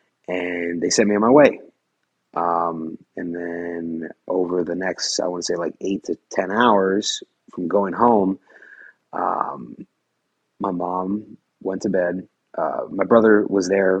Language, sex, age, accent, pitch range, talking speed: English, male, 30-49, American, 85-100 Hz, 155 wpm